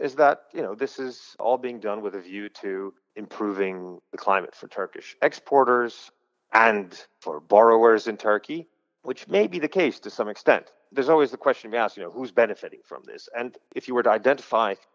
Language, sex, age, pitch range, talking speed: English, male, 30-49, 95-140 Hz, 205 wpm